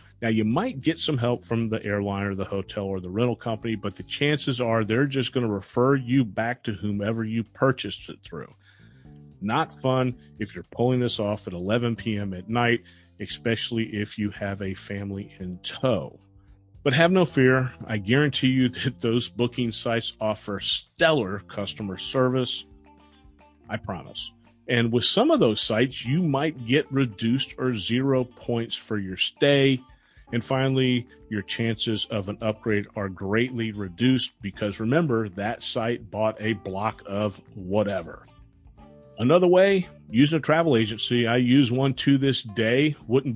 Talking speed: 165 wpm